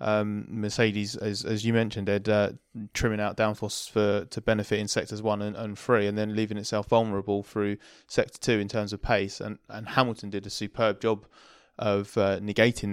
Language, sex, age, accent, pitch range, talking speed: English, male, 20-39, British, 100-110 Hz, 195 wpm